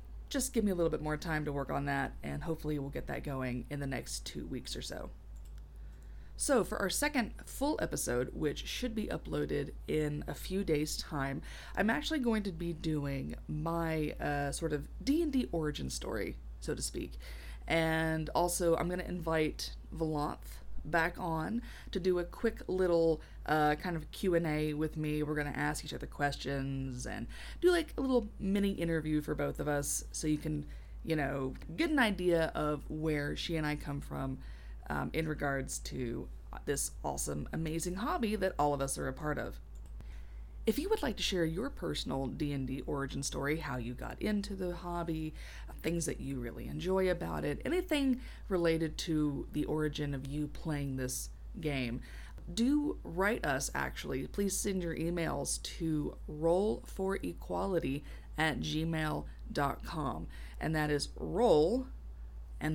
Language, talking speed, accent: English, 170 wpm, American